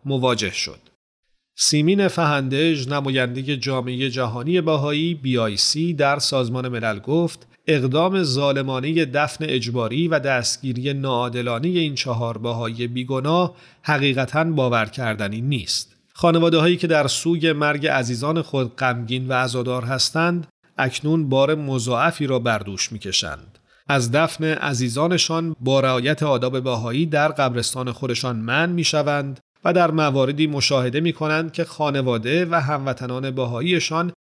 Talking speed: 120 wpm